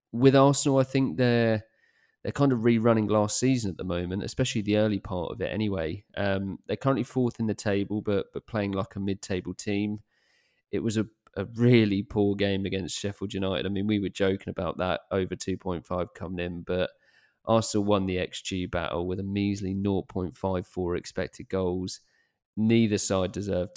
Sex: male